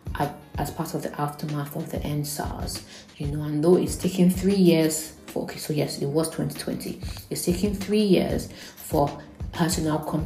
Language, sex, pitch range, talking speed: English, female, 145-170 Hz, 195 wpm